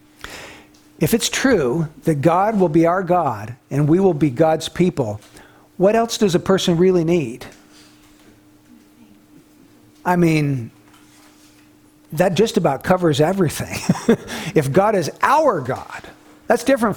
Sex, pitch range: male, 160-220 Hz